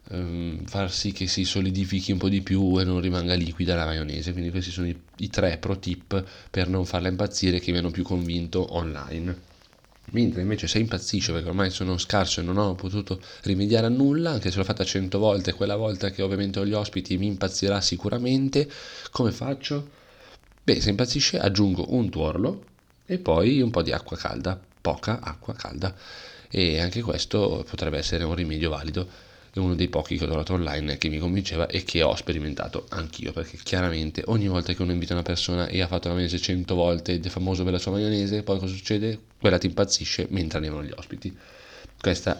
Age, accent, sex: 30-49, native, male